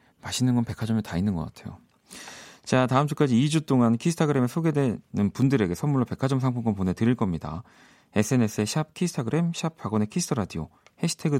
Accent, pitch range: native, 100-140 Hz